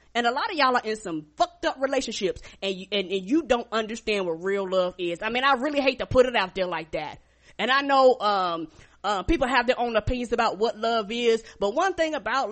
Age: 20-39